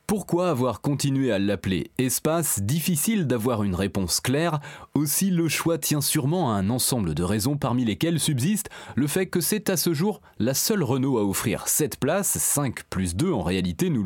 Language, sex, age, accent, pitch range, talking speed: French, male, 30-49, French, 115-165 Hz, 195 wpm